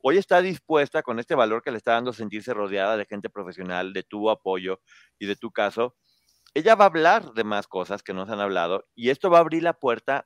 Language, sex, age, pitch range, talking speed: Spanish, male, 40-59, 105-140 Hz, 240 wpm